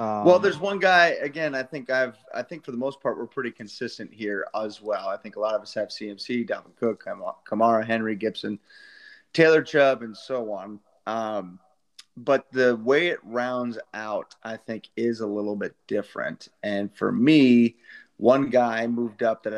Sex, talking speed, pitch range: male, 185 wpm, 110-130 Hz